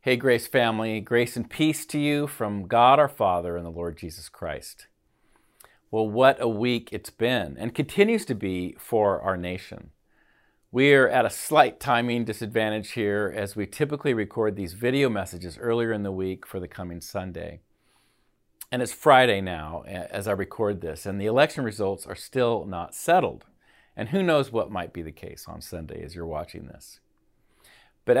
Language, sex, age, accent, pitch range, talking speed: English, male, 50-69, American, 90-125 Hz, 175 wpm